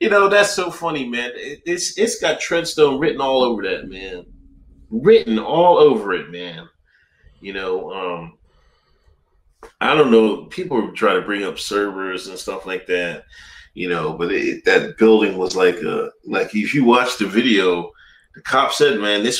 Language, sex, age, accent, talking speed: English, male, 30-49, American, 175 wpm